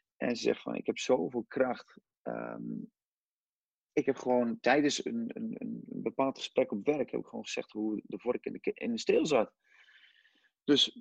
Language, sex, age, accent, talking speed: Dutch, male, 40-59, Dutch, 185 wpm